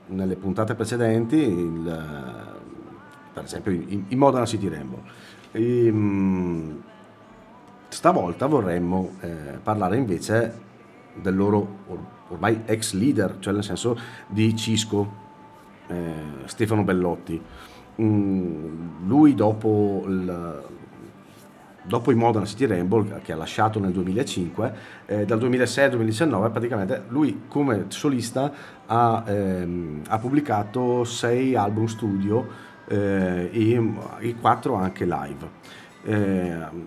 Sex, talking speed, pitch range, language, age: male, 110 wpm, 90-115 Hz, Italian, 40-59